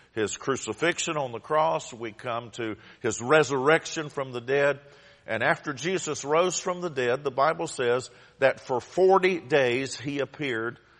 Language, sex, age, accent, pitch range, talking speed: English, male, 50-69, American, 110-150 Hz, 160 wpm